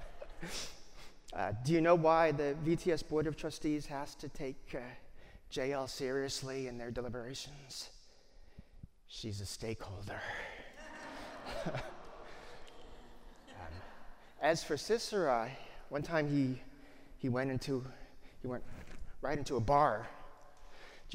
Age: 30-49